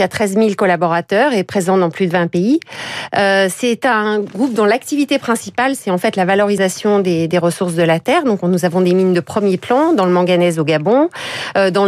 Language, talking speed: French, 225 wpm